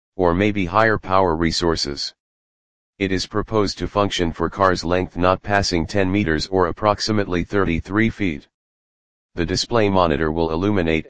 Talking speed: 140 wpm